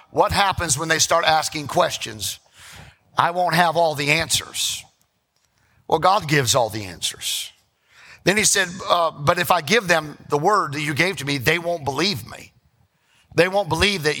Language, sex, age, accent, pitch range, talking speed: English, male, 50-69, American, 140-175 Hz, 180 wpm